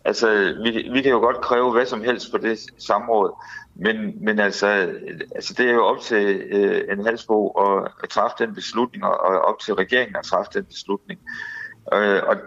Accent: native